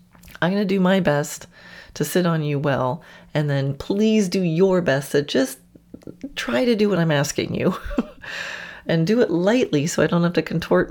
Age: 30-49